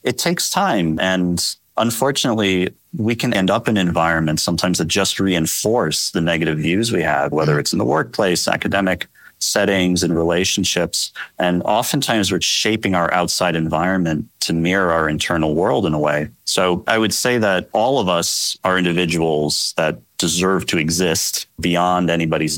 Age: 30-49